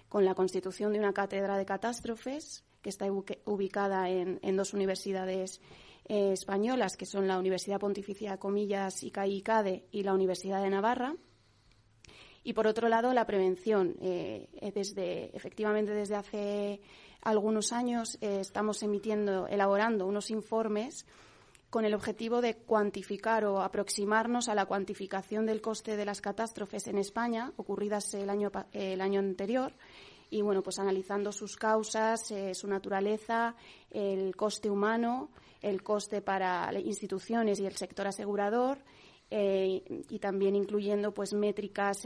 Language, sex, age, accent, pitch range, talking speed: Spanish, female, 30-49, Spanish, 195-220 Hz, 140 wpm